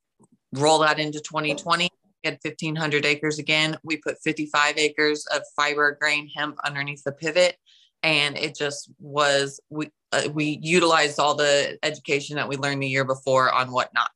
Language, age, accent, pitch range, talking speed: English, 20-39, American, 145-170 Hz, 170 wpm